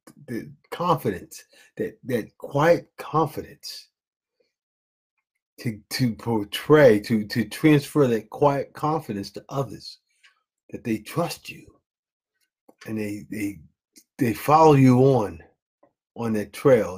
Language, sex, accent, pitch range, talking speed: English, male, American, 100-135 Hz, 110 wpm